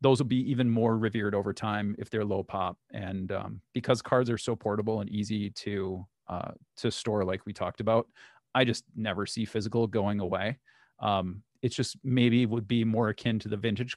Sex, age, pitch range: male, 30-49, 105-125 Hz